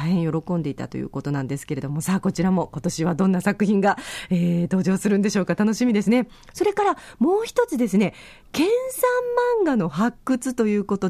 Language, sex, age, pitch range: Japanese, female, 40-59, 170-240 Hz